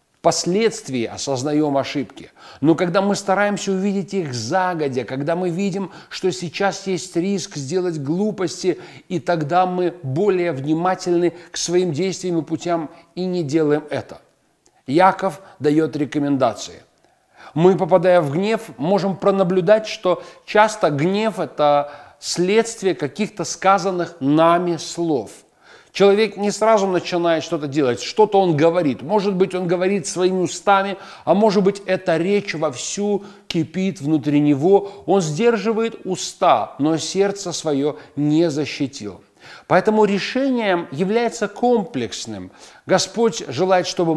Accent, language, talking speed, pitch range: native, Russian, 120 wpm, 150-195 Hz